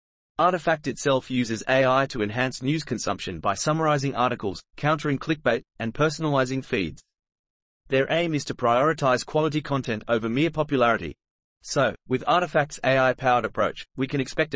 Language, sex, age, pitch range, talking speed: English, male, 30-49, 120-150 Hz, 140 wpm